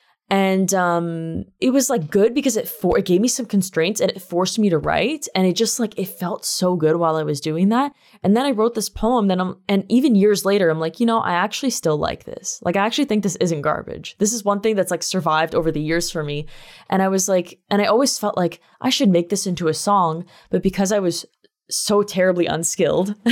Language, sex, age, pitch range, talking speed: English, female, 10-29, 165-205 Hz, 245 wpm